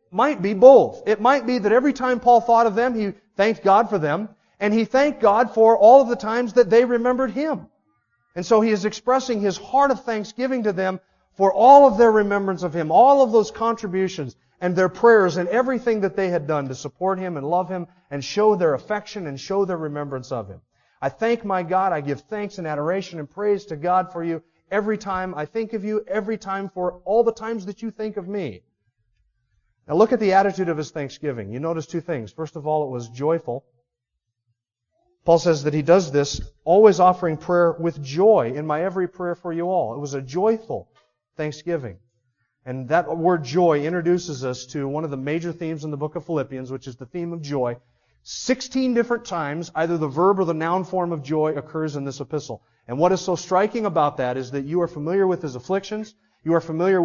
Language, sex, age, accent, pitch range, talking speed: English, male, 40-59, American, 150-215 Hz, 220 wpm